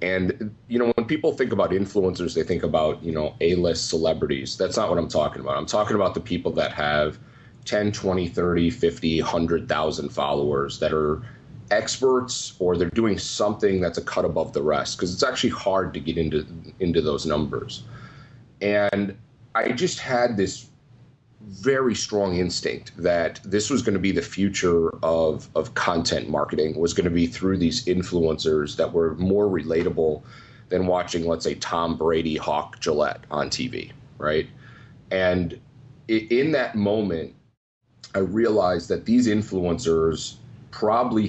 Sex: male